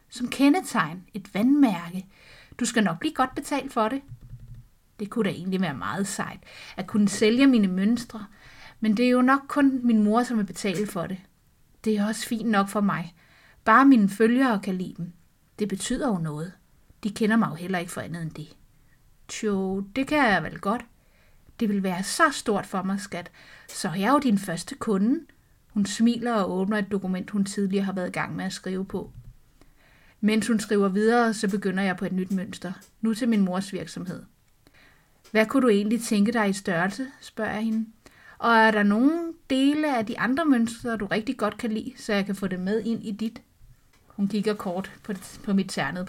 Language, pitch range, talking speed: Danish, 190-235 Hz, 205 wpm